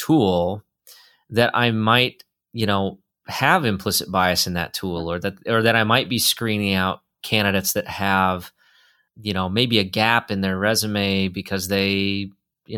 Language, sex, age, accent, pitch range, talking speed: English, male, 30-49, American, 95-115 Hz, 165 wpm